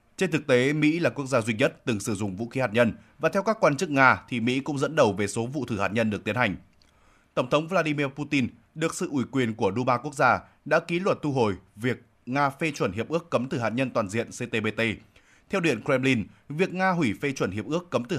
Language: Vietnamese